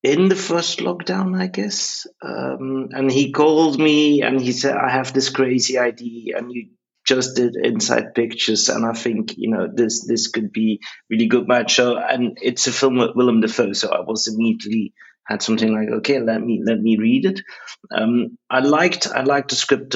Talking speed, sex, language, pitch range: 195 wpm, male, English, 115-145 Hz